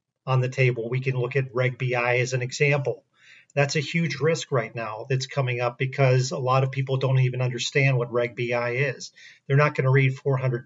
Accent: American